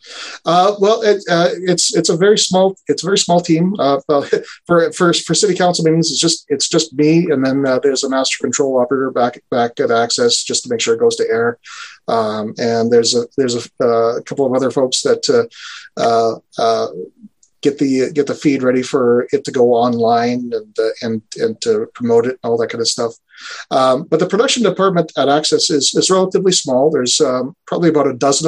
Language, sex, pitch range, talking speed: English, male, 125-185 Hz, 215 wpm